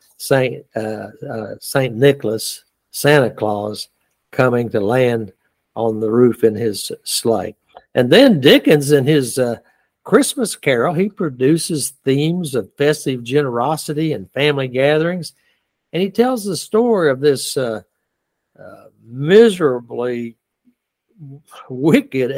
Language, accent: English, American